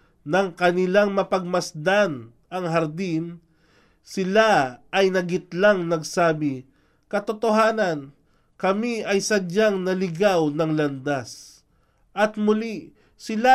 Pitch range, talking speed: 145-205 Hz, 85 wpm